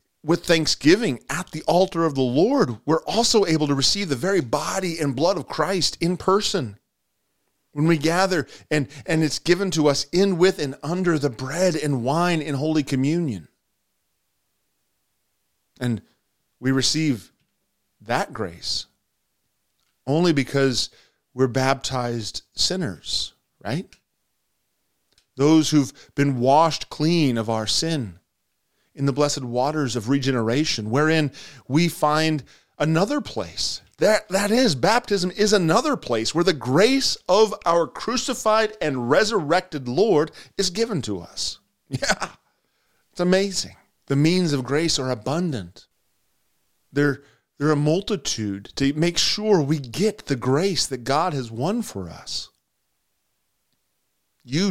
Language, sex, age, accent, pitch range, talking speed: English, male, 30-49, American, 130-175 Hz, 130 wpm